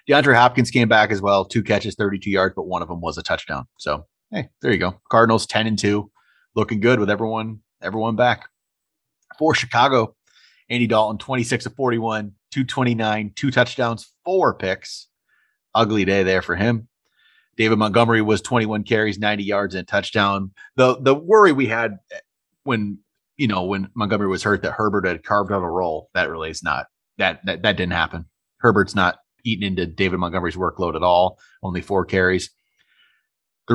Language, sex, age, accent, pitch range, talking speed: English, male, 30-49, American, 95-115 Hz, 180 wpm